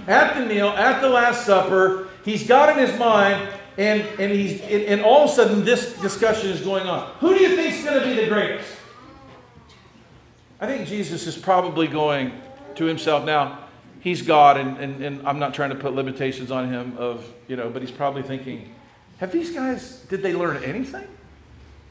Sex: male